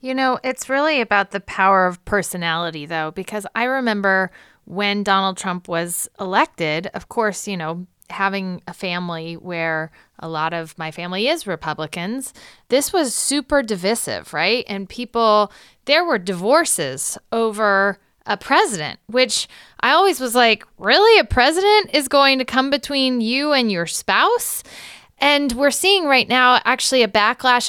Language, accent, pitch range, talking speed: English, American, 185-265 Hz, 155 wpm